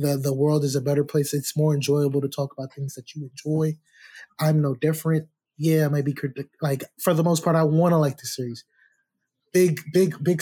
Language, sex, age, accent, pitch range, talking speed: English, male, 20-39, American, 140-170 Hz, 220 wpm